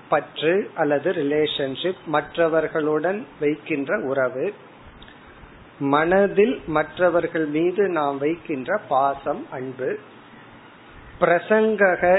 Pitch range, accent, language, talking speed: 145-180 Hz, native, Tamil, 70 wpm